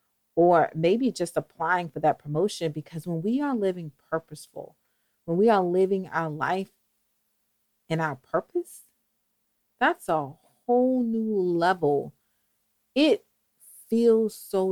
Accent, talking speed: American, 120 wpm